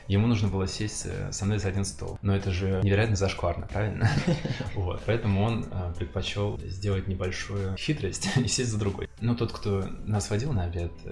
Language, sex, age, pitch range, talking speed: Russian, male, 20-39, 95-105 Hz, 175 wpm